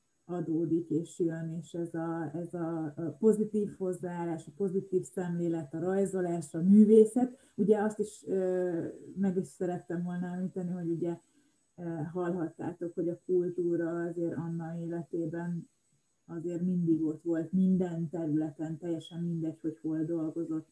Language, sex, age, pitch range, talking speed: Hungarian, female, 20-39, 165-190 Hz, 130 wpm